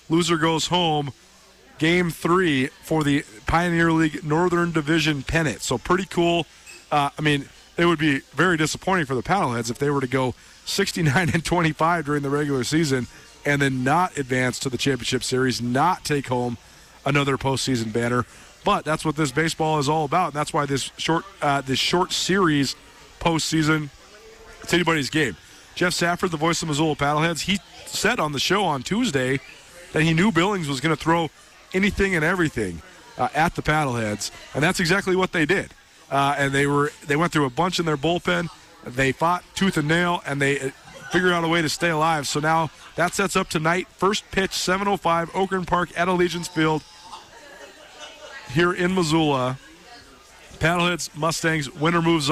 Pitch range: 140-175 Hz